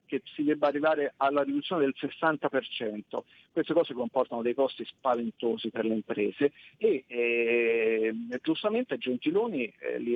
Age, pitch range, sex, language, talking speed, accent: 50-69, 125-170 Hz, male, Italian, 135 wpm, native